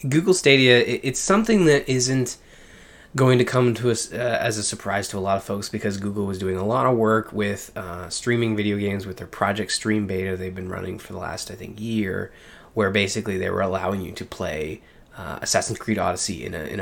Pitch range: 95-125 Hz